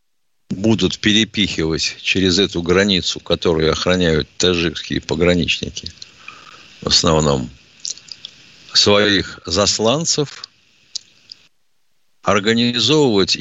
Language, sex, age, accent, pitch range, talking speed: Russian, male, 50-69, native, 90-125 Hz, 65 wpm